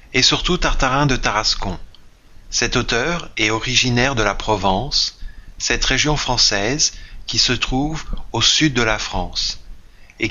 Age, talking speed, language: 30-49, 140 wpm, French